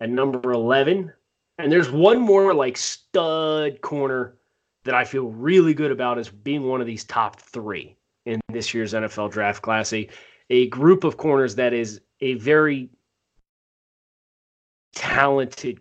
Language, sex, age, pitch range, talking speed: English, male, 30-49, 115-135 Hz, 150 wpm